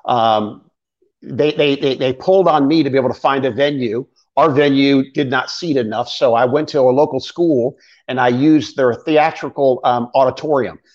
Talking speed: 190 wpm